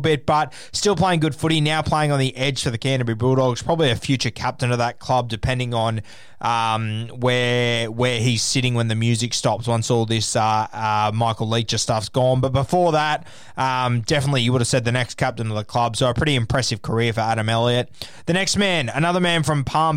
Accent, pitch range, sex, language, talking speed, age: Australian, 120-150 Hz, male, English, 215 wpm, 20-39